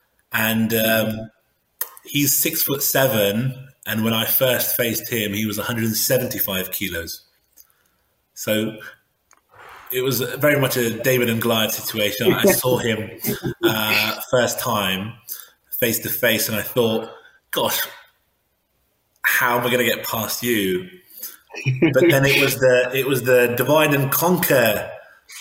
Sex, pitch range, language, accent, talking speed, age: male, 110-130 Hz, English, British, 135 wpm, 20-39